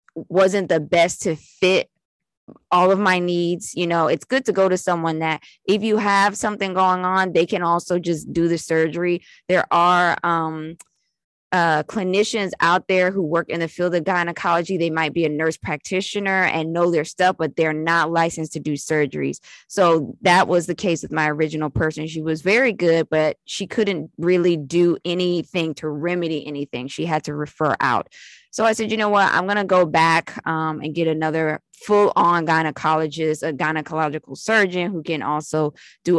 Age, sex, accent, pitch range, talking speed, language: 20-39, female, American, 155-190 Hz, 190 wpm, English